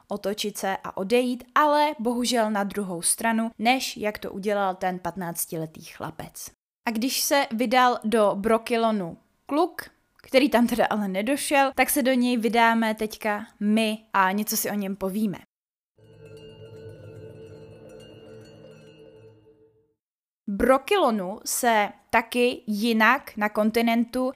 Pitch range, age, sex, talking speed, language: 200-245 Hz, 20-39, female, 115 wpm, Czech